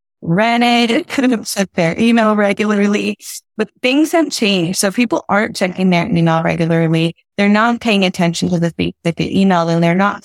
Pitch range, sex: 170-215 Hz, female